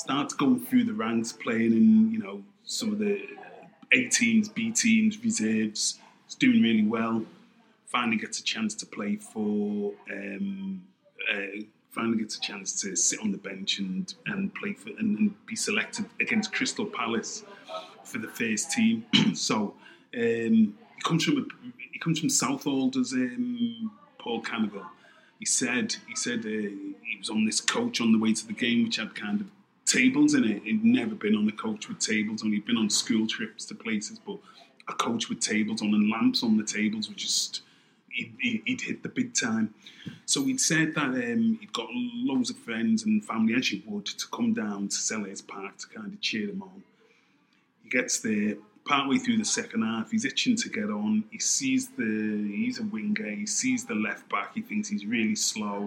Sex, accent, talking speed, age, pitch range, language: male, British, 195 wpm, 30-49, 200-230 Hz, English